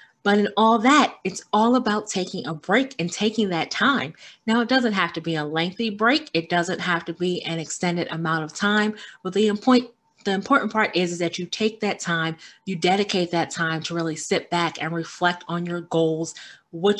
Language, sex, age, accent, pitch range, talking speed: English, female, 30-49, American, 170-215 Hz, 210 wpm